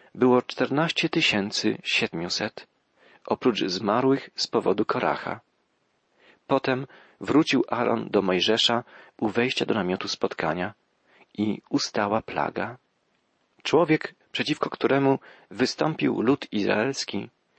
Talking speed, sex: 95 wpm, male